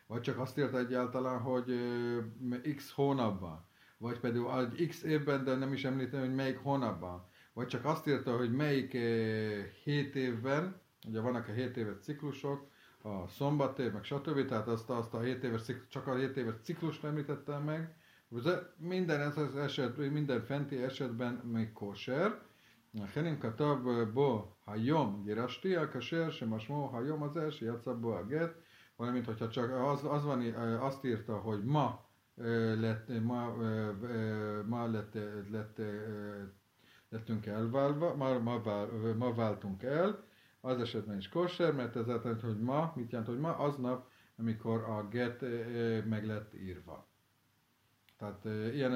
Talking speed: 140 wpm